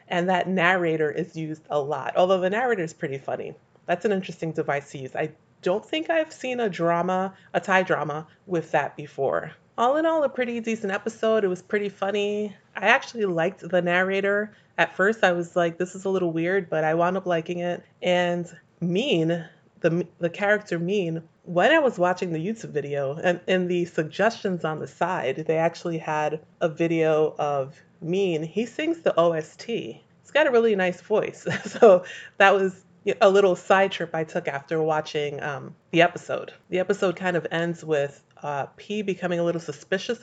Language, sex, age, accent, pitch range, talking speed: English, female, 30-49, American, 160-195 Hz, 190 wpm